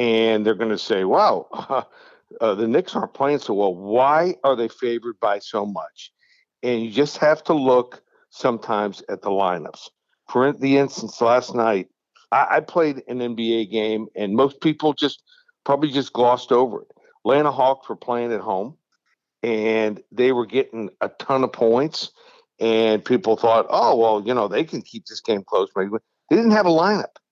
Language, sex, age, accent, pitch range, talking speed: English, male, 60-79, American, 115-155 Hz, 185 wpm